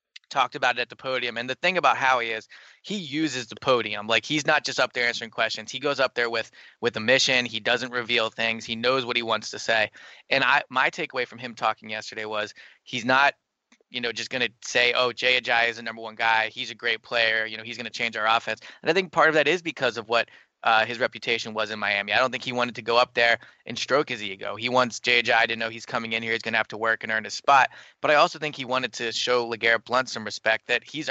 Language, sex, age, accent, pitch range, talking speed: English, male, 20-39, American, 110-130 Hz, 275 wpm